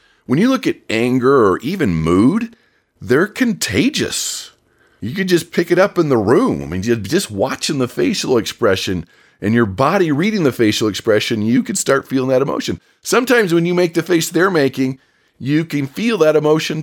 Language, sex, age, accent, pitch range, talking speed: English, male, 40-59, American, 130-180 Hz, 180 wpm